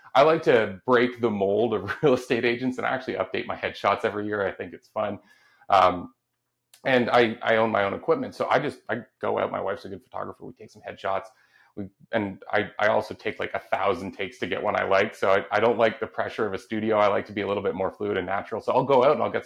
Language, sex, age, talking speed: English, male, 30-49, 270 wpm